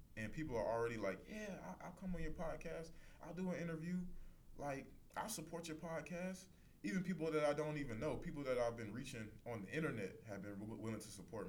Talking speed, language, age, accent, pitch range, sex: 210 wpm, English, 20-39, American, 95-135 Hz, male